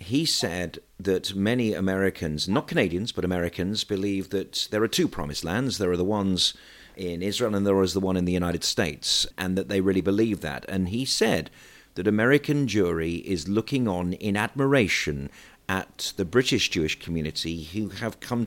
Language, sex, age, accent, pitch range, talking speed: English, male, 40-59, British, 90-110 Hz, 180 wpm